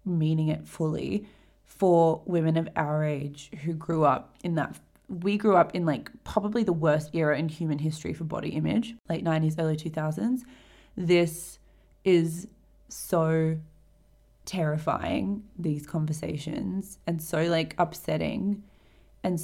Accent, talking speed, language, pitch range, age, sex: Australian, 135 wpm, English, 155-170 Hz, 20-39, female